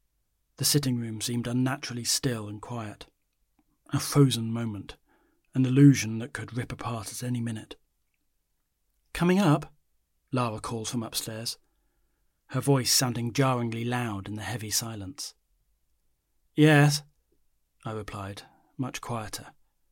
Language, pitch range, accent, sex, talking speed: English, 85-130 Hz, British, male, 120 wpm